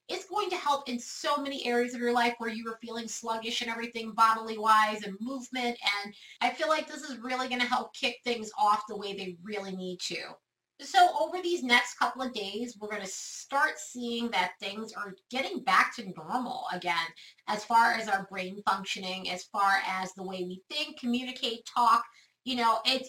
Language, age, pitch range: English, 30-49, 195-255 Hz